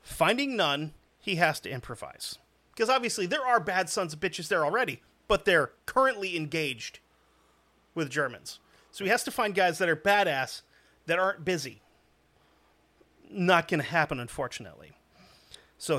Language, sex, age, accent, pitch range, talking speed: English, male, 30-49, American, 160-205 Hz, 150 wpm